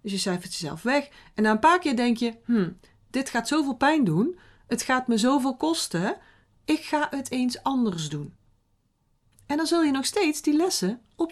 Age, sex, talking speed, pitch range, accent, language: 40-59, female, 200 wpm, 195-285 Hz, Dutch, Dutch